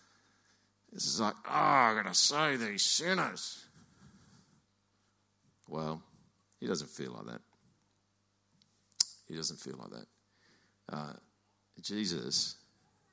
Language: English